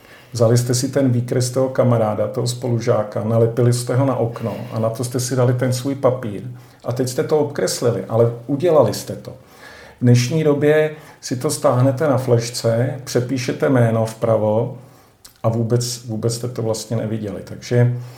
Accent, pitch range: native, 115-130 Hz